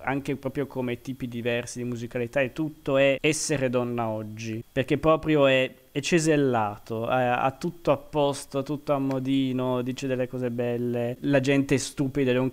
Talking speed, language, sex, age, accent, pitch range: 165 wpm, Italian, male, 20-39, native, 120-145 Hz